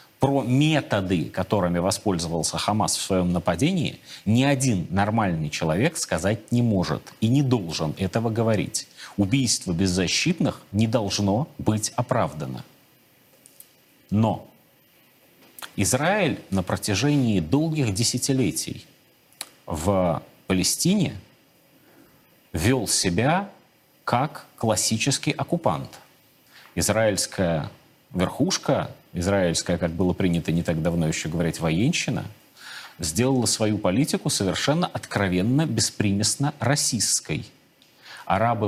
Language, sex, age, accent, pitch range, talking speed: Russian, male, 30-49, native, 95-135 Hz, 90 wpm